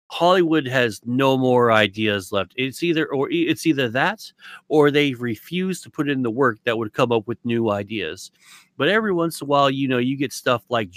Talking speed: 215 wpm